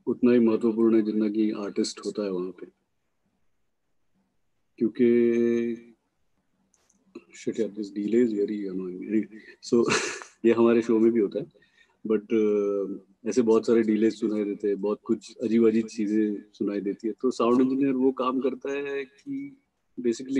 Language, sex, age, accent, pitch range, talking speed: English, male, 30-49, Indian, 105-125 Hz, 95 wpm